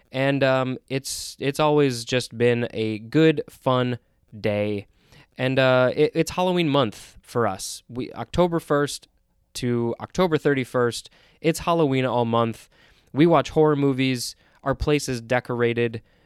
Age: 20-39